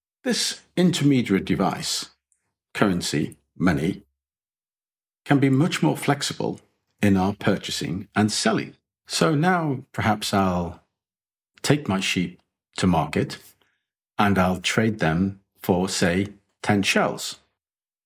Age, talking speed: 50-69, 105 wpm